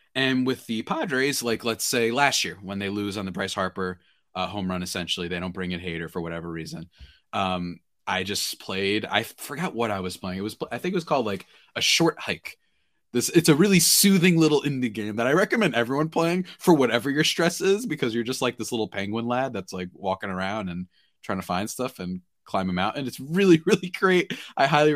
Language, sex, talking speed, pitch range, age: English, male, 230 wpm, 90-135 Hz, 20-39